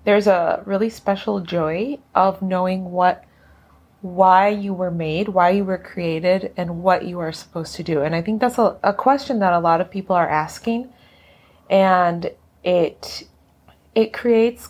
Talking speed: 165 wpm